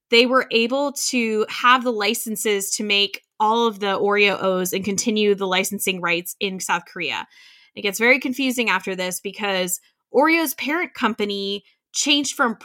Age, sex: 10-29, female